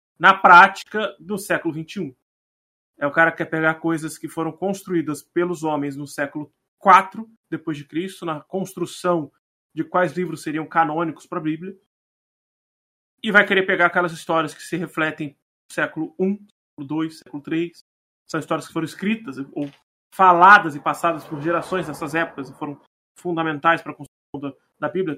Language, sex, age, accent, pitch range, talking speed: Portuguese, male, 20-39, Brazilian, 150-195 Hz, 170 wpm